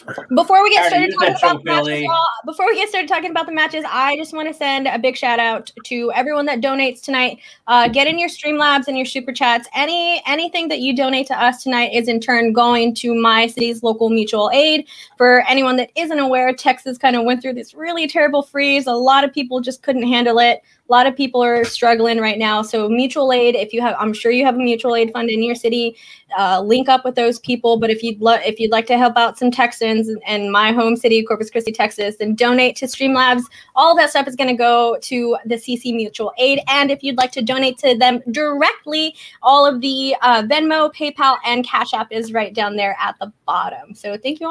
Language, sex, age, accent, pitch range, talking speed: English, female, 20-39, American, 225-280 Hz, 230 wpm